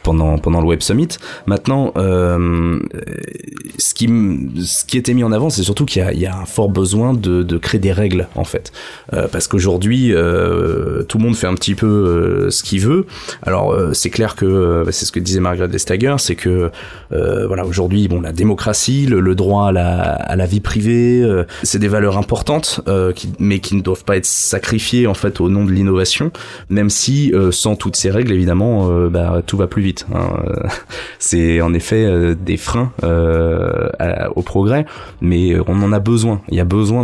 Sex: male